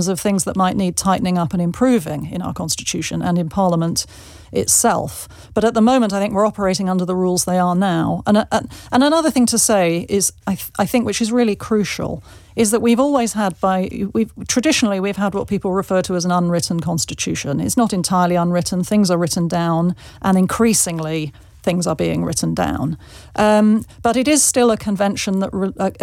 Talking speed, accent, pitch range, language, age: 205 wpm, British, 175-215 Hz, English, 40-59